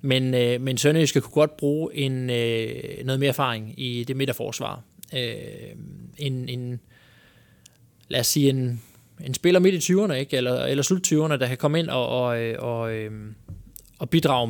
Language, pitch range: Danish, 125-155 Hz